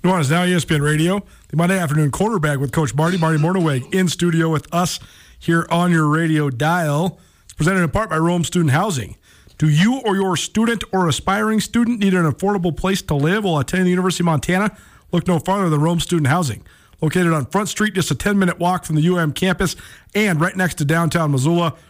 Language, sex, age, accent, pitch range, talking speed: English, male, 40-59, American, 150-185 Hz, 205 wpm